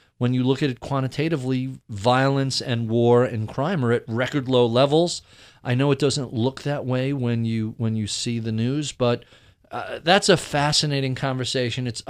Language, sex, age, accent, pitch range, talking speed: English, male, 40-59, American, 120-150 Hz, 185 wpm